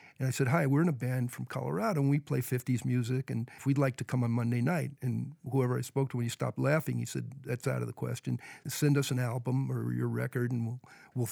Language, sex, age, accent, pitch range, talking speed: English, male, 50-69, American, 120-140 Hz, 265 wpm